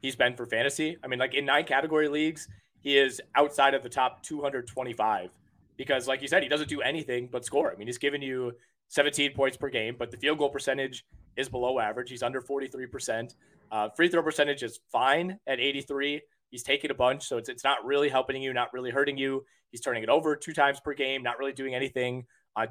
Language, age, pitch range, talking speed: English, 20-39, 125-145 Hz, 220 wpm